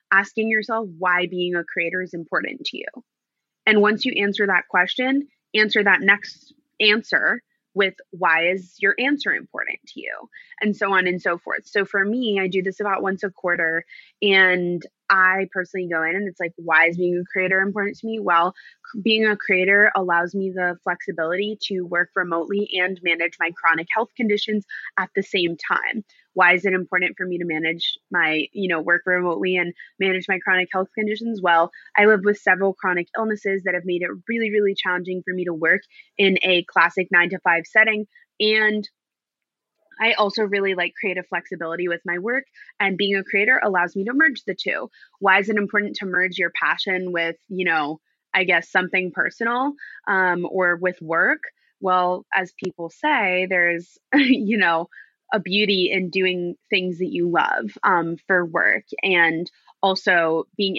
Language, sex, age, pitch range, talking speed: English, female, 20-39, 175-210 Hz, 185 wpm